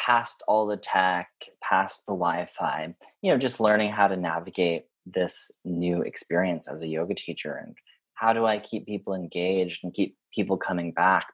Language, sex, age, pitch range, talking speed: English, male, 20-39, 90-110 Hz, 175 wpm